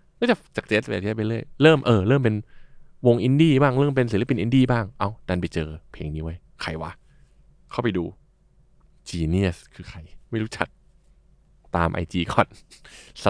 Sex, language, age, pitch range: male, Thai, 20-39, 90-120 Hz